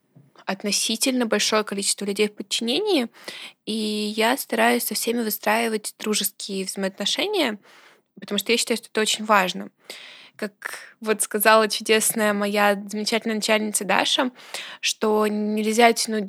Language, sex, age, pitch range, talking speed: Russian, female, 20-39, 200-225 Hz, 120 wpm